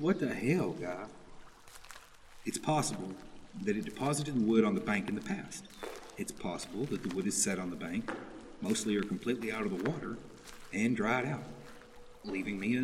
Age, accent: 40-59, American